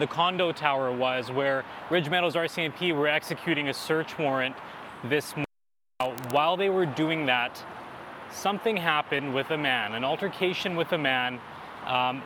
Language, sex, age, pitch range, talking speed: English, male, 20-39, 130-155 Hz, 150 wpm